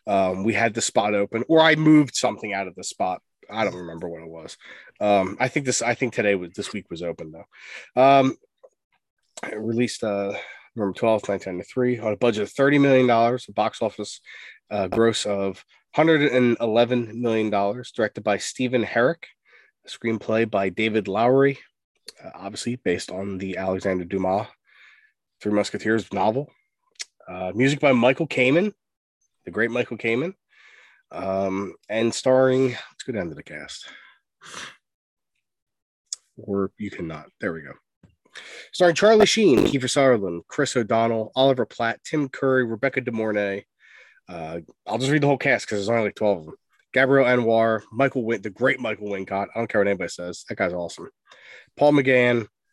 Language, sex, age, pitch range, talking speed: English, male, 20-39, 100-130 Hz, 165 wpm